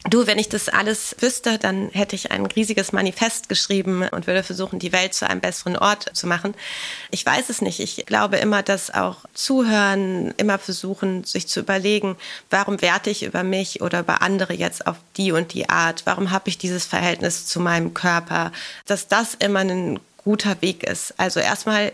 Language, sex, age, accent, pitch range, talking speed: German, female, 30-49, German, 185-215 Hz, 190 wpm